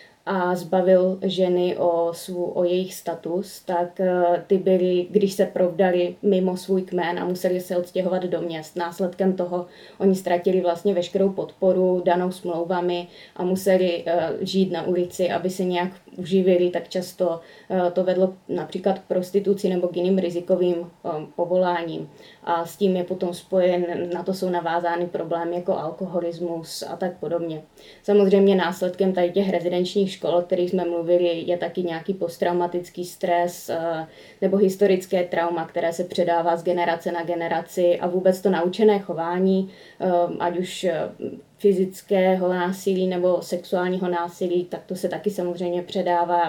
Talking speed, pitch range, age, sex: 145 wpm, 175-185 Hz, 20-39, female